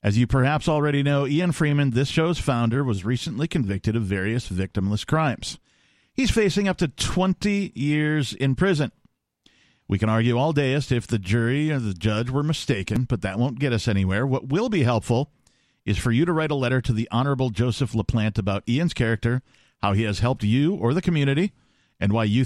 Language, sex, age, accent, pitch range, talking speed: English, male, 50-69, American, 115-155 Hz, 205 wpm